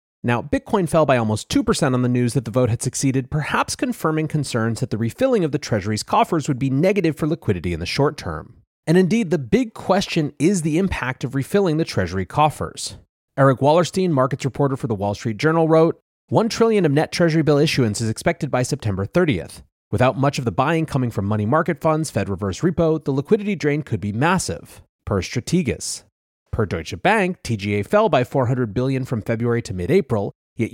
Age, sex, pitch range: 30-49, male, 110-160 Hz